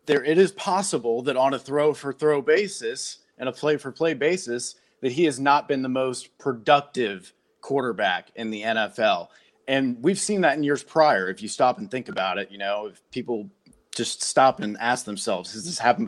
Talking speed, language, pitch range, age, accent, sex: 190 wpm, English, 110-135 Hz, 30-49, American, male